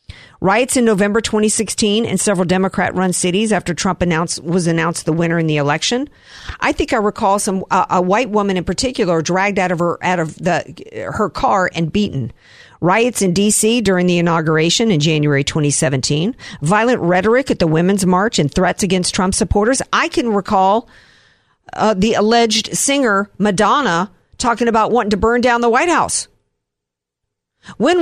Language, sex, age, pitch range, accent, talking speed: English, female, 50-69, 180-230 Hz, American, 170 wpm